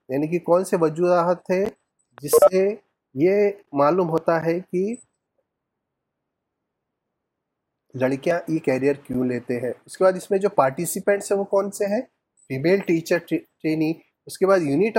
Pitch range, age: 140-195 Hz, 30-49